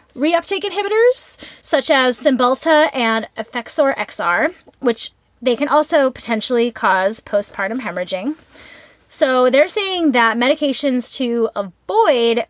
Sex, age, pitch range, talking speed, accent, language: female, 20-39, 210-295 Hz, 110 wpm, American, English